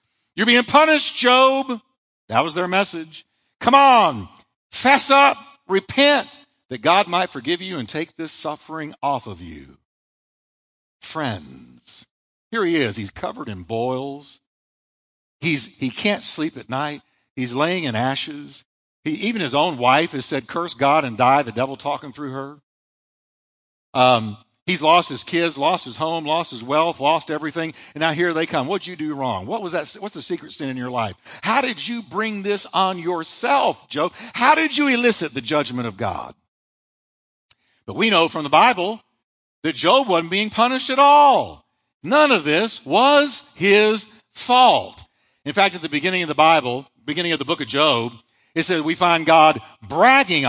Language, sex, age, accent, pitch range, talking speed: English, male, 50-69, American, 135-205 Hz, 175 wpm